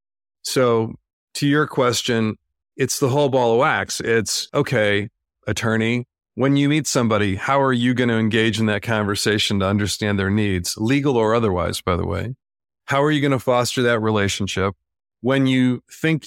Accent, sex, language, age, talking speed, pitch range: American, male, English, 40-59, 175 wpm, 100-125 Hz